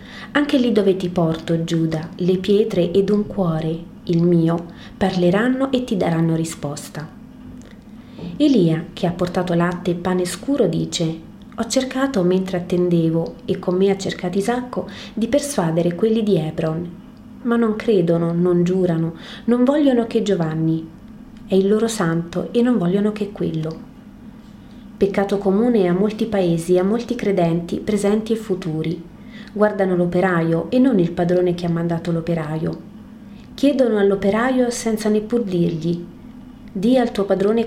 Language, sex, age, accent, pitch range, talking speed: Italian, female, 30-49, native, 170-225 Hz, 145 wpm